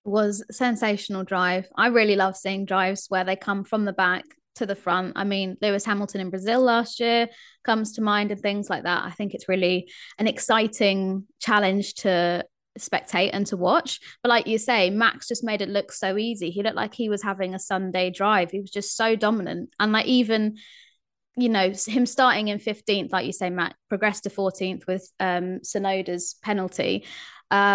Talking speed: 195 wpm